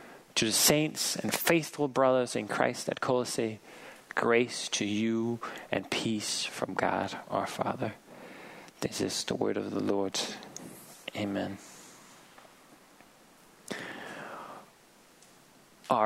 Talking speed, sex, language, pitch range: 105 wpm, male, Danish, 110-135 Hz